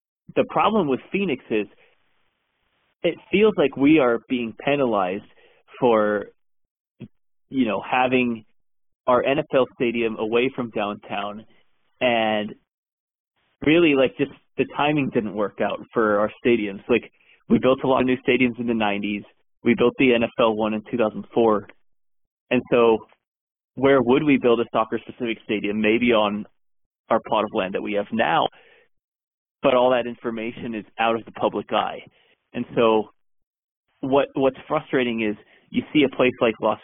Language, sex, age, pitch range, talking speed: English, male, 30-49, 110-130 Hz, 150 wpm